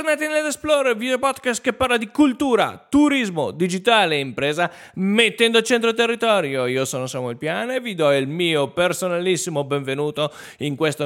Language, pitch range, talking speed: Italian, 135-200 Hz, 165 wpm